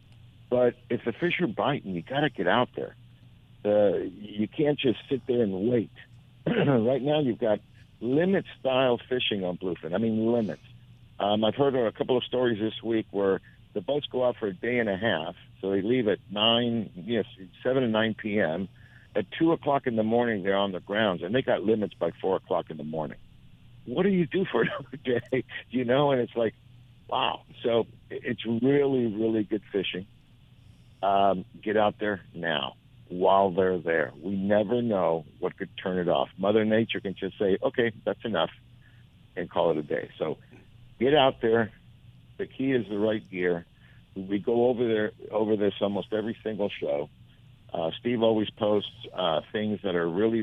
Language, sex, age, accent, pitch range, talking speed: English, male, 60-79, American, 105-125 Hz, 195 wpm